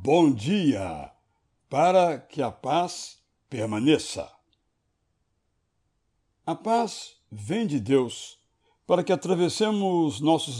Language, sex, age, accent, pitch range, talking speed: Portuguese, male, 60-79, Brazilian, 115-180 Hz, 90 wpm